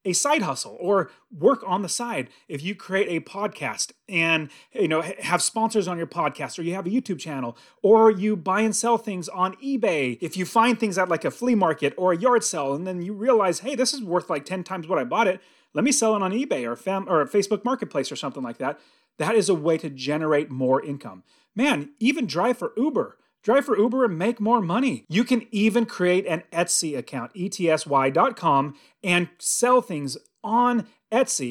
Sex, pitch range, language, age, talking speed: male, 145-215 Hz, English, 30-49, 210 wpm